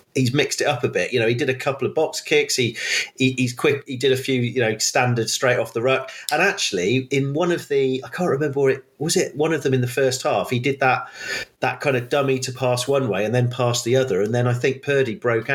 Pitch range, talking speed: 120-140 Hz, 280 wpm